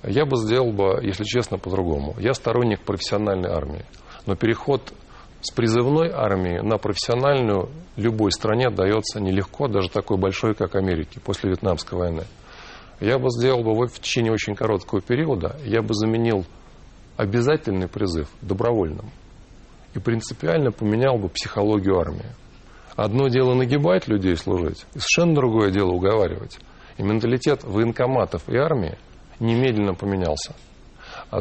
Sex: male